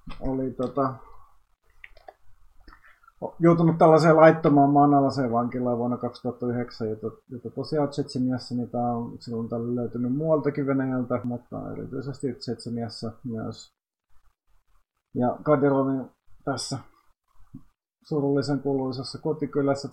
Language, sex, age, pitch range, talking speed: Finnish, male, 30-49, 120-140 Hz, 85 wpm